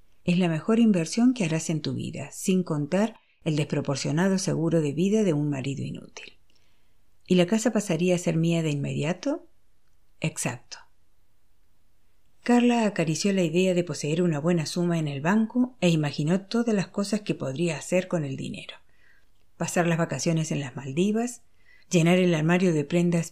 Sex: female